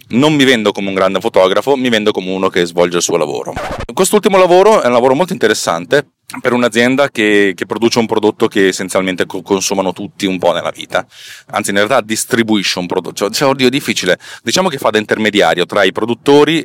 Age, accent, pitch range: 30-49, native, 95-125 Hz